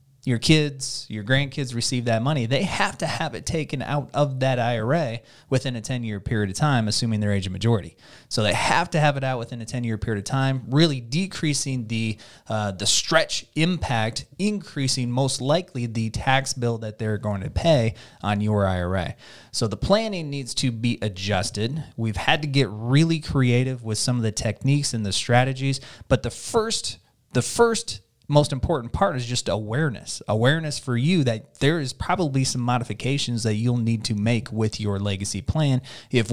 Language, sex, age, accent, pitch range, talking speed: English, male, 30-49, American, 110-140 Hz, 185 wpm